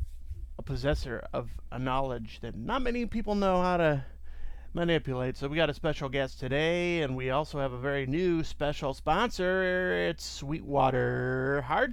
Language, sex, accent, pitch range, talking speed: English, male, American, 135-175 Hz, 155 wpm